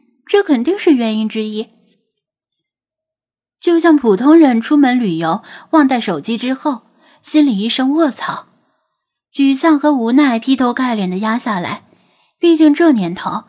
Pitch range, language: 205-290 Hz, Chinese